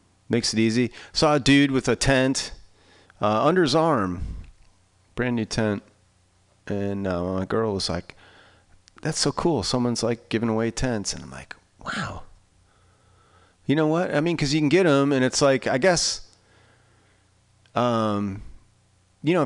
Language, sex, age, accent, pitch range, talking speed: English, male, 30-49, American, 95-135 Hz, 160 wpm